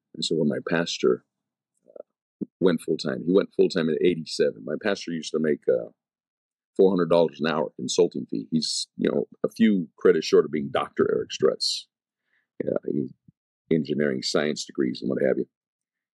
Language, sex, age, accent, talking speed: English, male, 50-69, American, 160 wpm